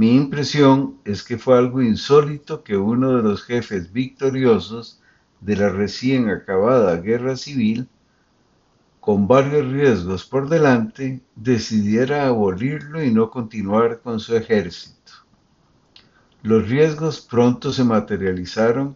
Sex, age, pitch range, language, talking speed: male, 60-79, 110-140 Hz, Spanish, 115 wpm